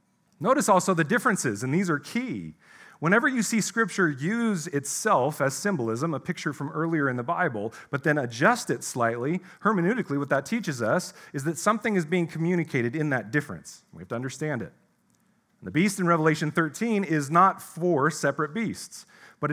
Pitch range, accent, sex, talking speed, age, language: 140-185 Hz, American, male, 180 wpm, 40-59, English